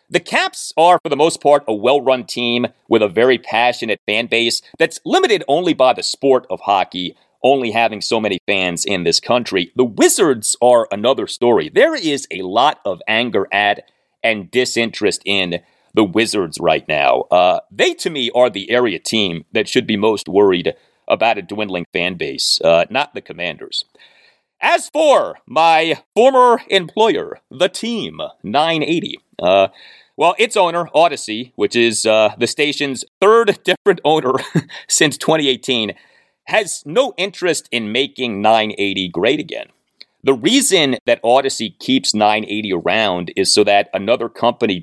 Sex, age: male, 40-59